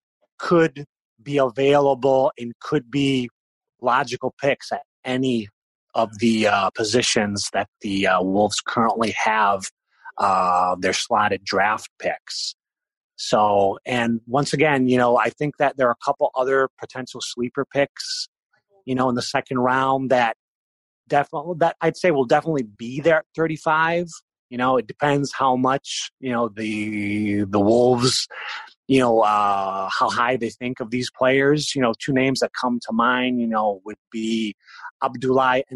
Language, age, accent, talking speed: English, 30-49, American, 160 wpm